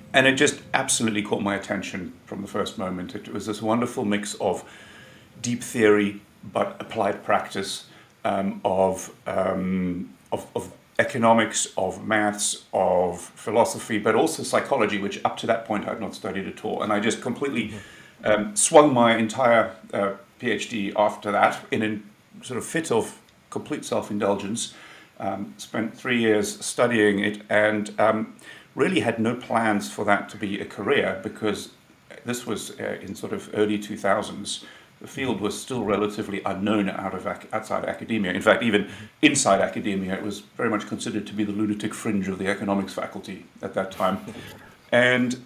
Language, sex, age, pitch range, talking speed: English, male, 50-69, 100-120 Hz, 160 wpm